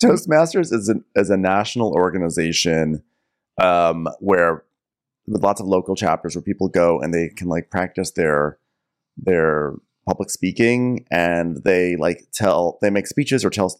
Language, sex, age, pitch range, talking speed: English, male, 30-49, 95-130 Hz, 150 wpm